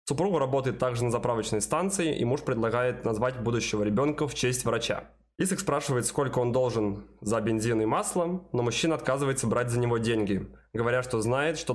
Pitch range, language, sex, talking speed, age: 115-145 Hz, Russian, male, 180 wpm, 20-39